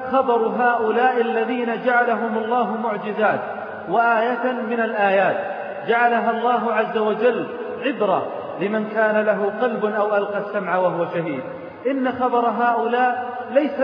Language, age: Arabic, 40-59